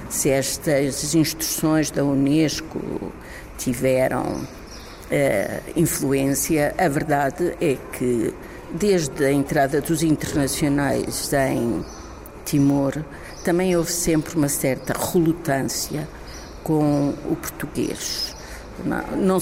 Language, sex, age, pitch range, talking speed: Portuguese, female, 50-69, 145-195 Hz, 95 wpm